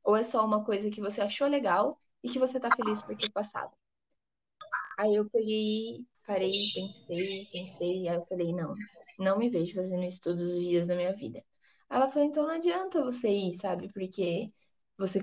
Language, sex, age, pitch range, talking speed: Portuguese, female, 10-29, 200-275 Hz, 195 wpm